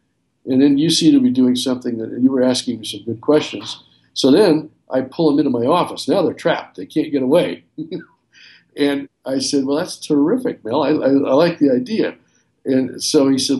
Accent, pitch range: American, 115-150 Hz